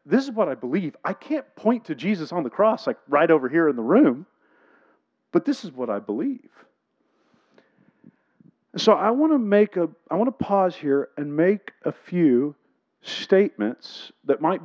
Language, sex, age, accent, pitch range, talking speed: English, male, 40-59, American, 155-220 Hz, 180 wpm